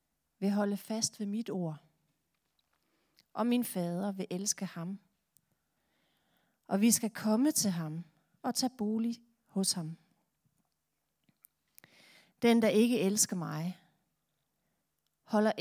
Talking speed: 110 wpm